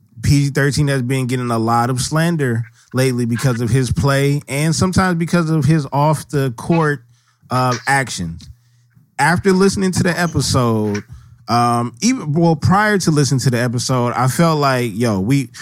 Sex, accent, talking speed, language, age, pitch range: male, American, 155 wpm, English, 20-39, 120-155 Hz